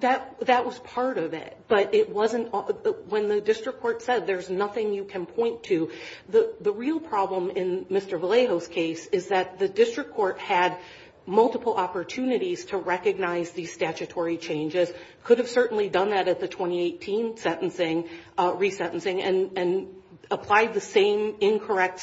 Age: 40-59